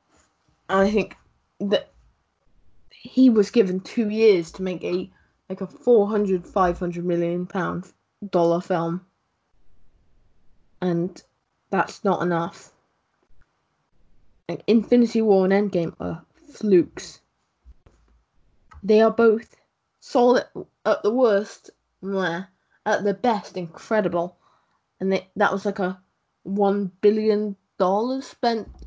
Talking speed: 105 wpm